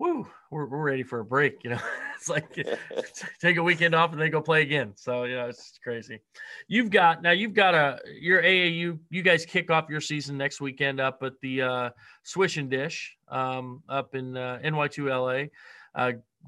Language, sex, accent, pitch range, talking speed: English, male, American, 135-165 Hz, 200 wpm